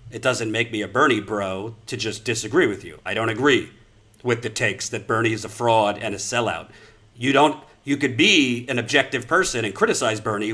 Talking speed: 210 wpm